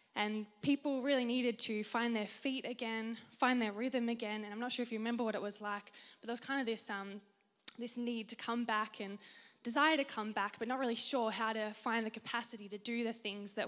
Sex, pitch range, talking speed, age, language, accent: female, 210-245 Hz, 240 wpm, 10-29, English, Australian